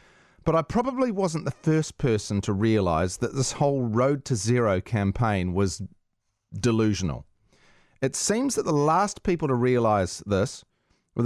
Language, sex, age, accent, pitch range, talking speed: English, male, 30-49, Australian, 105-130 Hz, 150 wpm